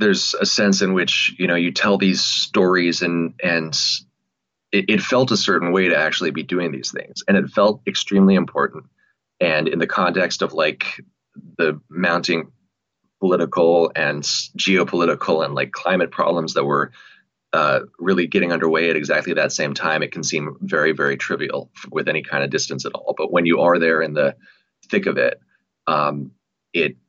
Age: 30-49